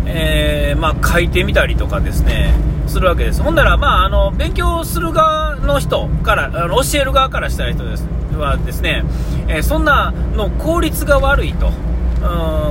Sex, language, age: male, Japanese, 40-59